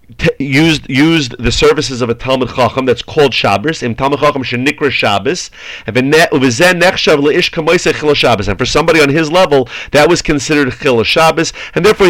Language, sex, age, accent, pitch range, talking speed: English, male, 40-59, American, 130-165 Hz, 120 wpm